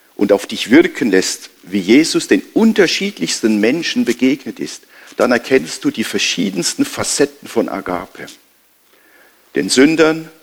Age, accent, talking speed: 50-69, German, 125 wpm